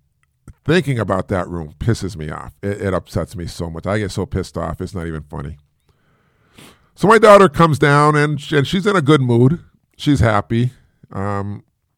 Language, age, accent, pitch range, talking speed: English, 50-69, American, 100-140 Hz, 190 wpm